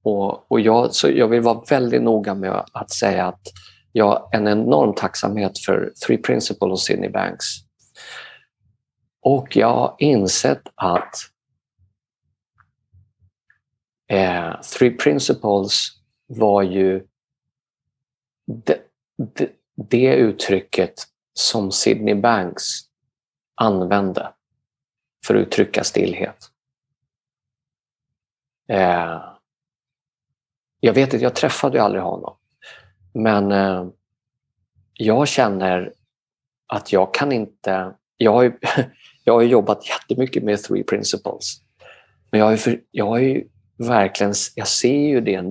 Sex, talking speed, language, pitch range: male, 110 wpm, Swedish, 95-125 Hz